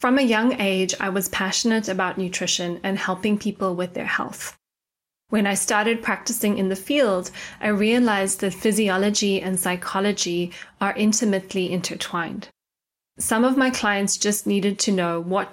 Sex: female